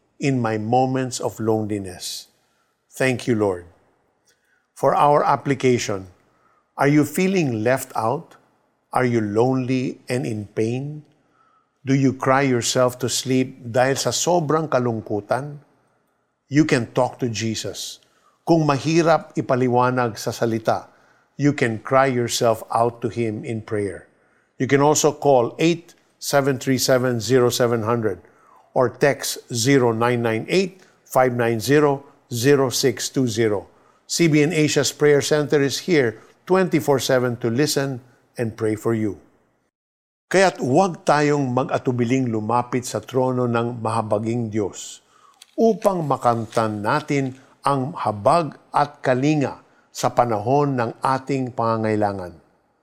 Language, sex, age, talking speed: Filipino, male, 50-69, 110 wpm